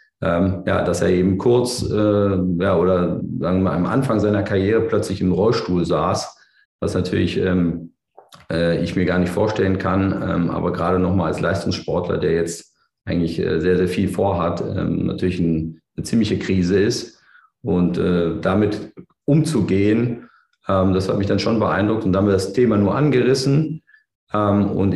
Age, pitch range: 40-59, 90-105 Hz